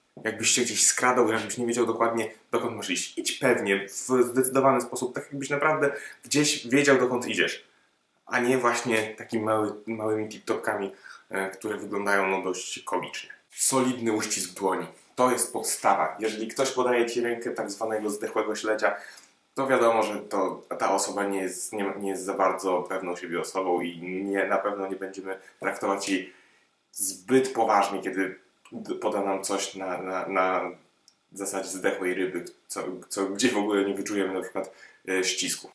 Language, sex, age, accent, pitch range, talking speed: Polish, male, 20-39, native, 100-125 Hz, 165 wpm